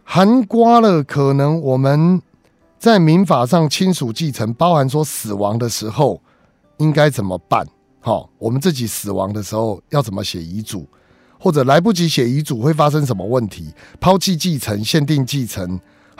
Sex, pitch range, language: male, 105-150 Hz, Chinese